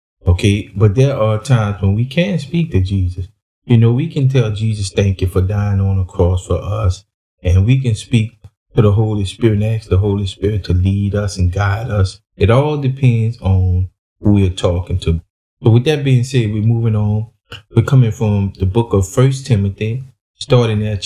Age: 20-39